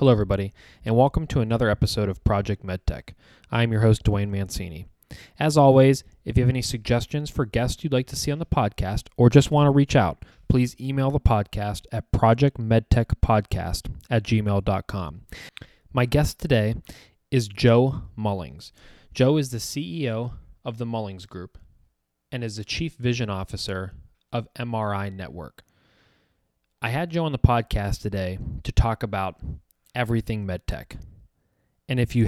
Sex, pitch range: male, 95-120 Hz